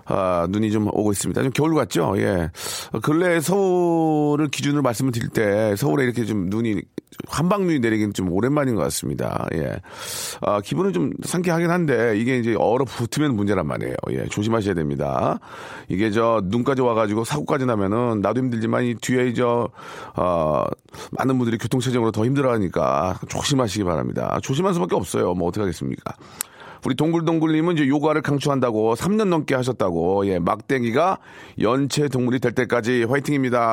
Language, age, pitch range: Korean, 40-59, 105-145 Hz